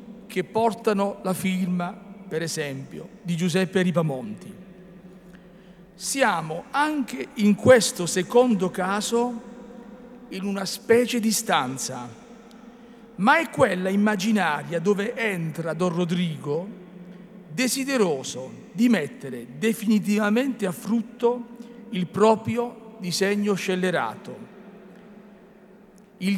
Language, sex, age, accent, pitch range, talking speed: Italian, male, 50-69, native, 185-230 Hz, 90 wpm